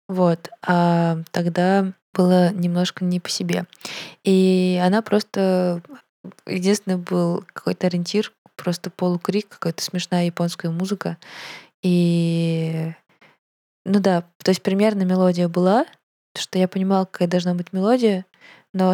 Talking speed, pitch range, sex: 115 wpm, 175-195 Hz, female